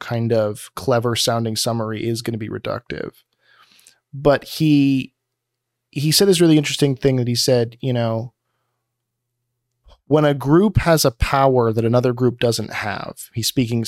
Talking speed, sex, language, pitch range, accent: 155 wpm, male, English, 115-140 Hz, American